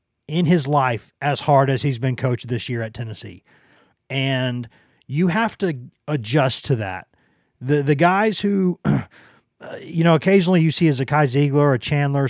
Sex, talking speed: male, 180 wpm